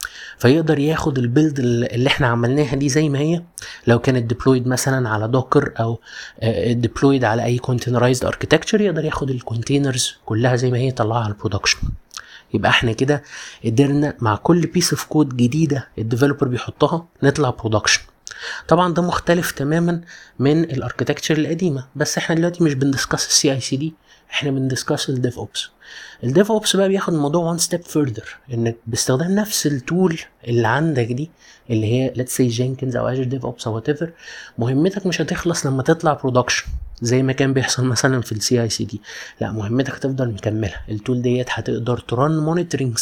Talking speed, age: 160 wpm, 30-49